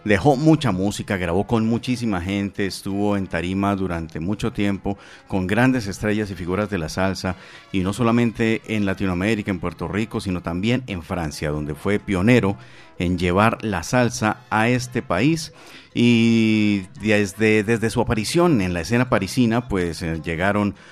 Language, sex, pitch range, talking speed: Spanish, male, 90-120 Hz, 155 wpm